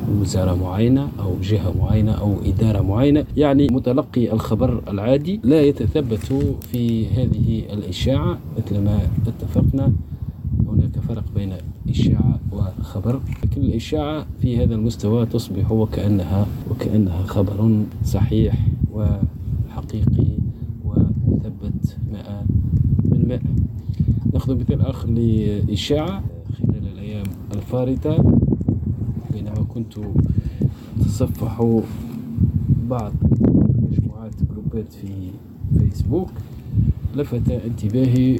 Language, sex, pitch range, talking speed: Arabic, male, 105-120 Hz, 85 wpm